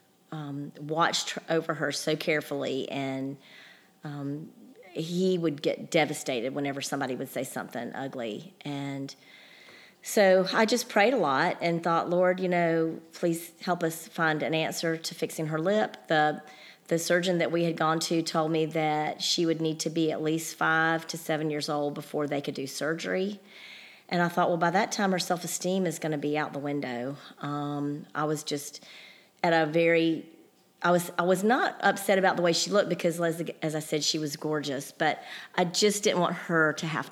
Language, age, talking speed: English, 40-59, 190 wpm